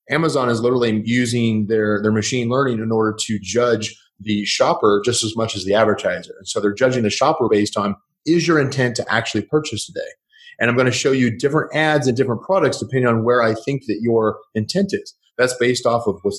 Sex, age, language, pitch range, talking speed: male, 30-49, English, 110-140 Hz, 220 wpm